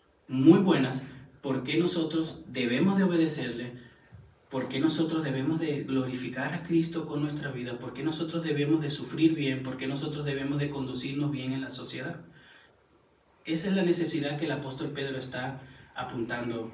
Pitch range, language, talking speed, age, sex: 130-165 Hz, Spanish, 165 wpm, 30-49, male